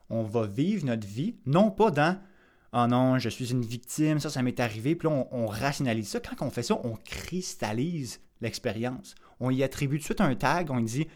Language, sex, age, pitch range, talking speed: French, male, 20-39, 115-155 Hz, 230 wpm